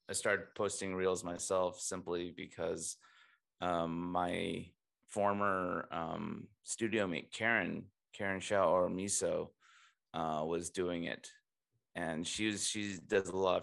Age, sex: 20-39, male